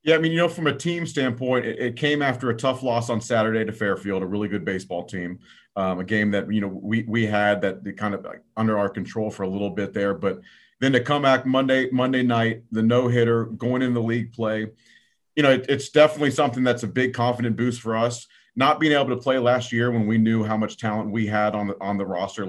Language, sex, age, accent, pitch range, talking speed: English, male, 40-59, American, 105-125 Hz, 250 wpm